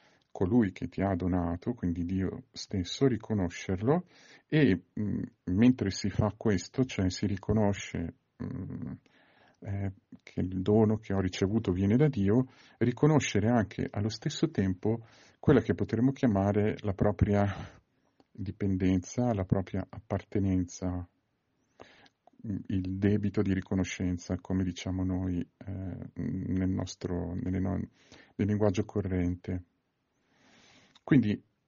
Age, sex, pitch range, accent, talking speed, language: 50-69, male, 95-120 Hz, native, 110 wpm, Italian